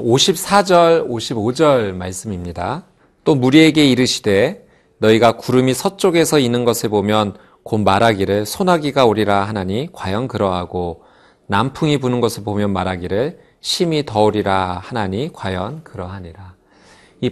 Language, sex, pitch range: Korean, male, 100-150 Hz